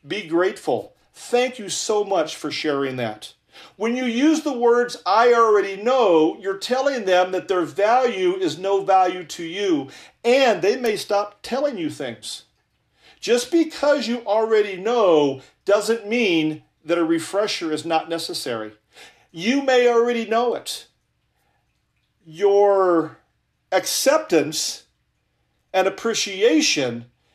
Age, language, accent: 40-59, English, American